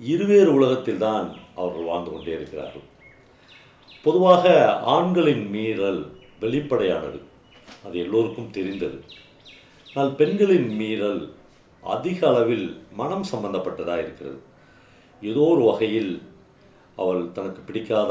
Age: 50-69